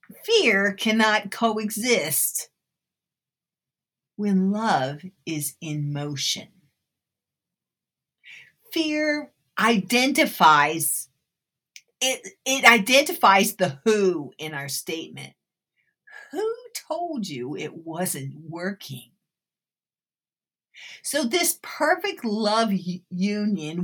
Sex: female